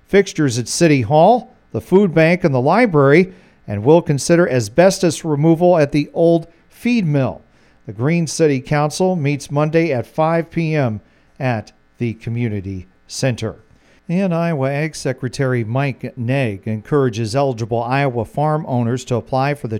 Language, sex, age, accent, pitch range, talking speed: English, male, 40-59, American, 125-165 Hz, 145 wpm